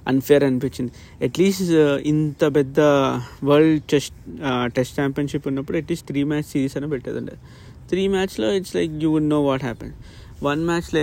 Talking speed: 145 wpm